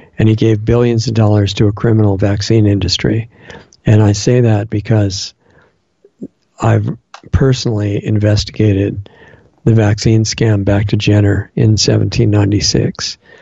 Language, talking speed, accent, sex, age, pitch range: English, 120 wpm, American, male, 60-79, 100-115 Hz